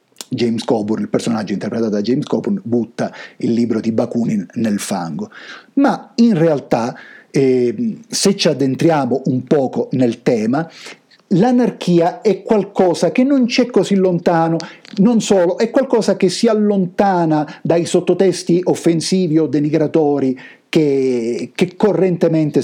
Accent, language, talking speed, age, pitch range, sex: native, Italian, 130 wpm, 50-69, 140-205 Hz, male